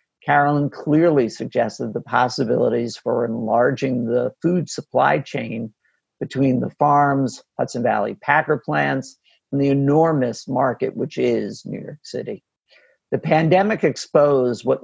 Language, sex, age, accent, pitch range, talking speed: English, male, 50-69, American, 120-145 Hz, 125 wpm